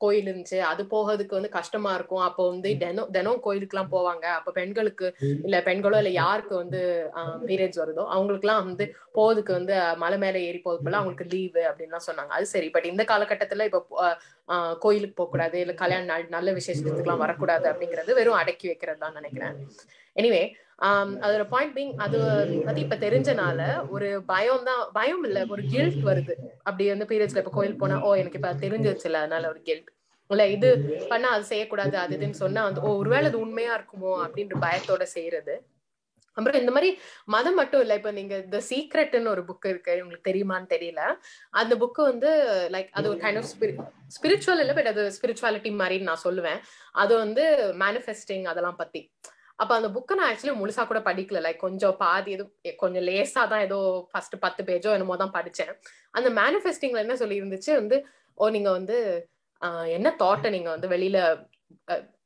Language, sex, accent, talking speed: English, female, Indian, 70 wpm